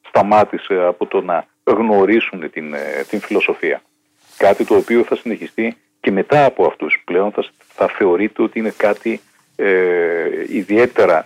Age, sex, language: 50-69, male, Greek